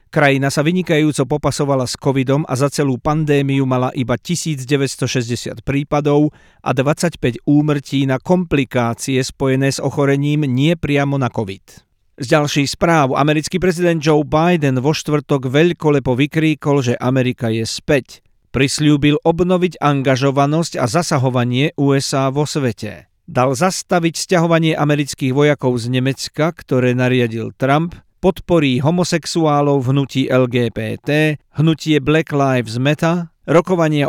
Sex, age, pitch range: male, 50-69, 130-155 Hz